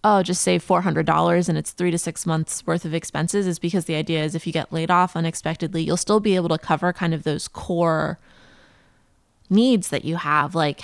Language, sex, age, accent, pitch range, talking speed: English, female, 20-39, American, 160-185 Hz, 215 wpm